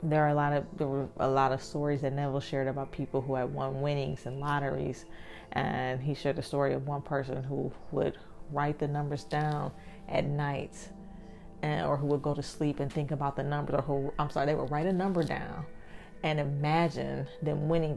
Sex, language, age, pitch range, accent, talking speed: female, English, 30-49, 130-160 Hz, American, 215 wpm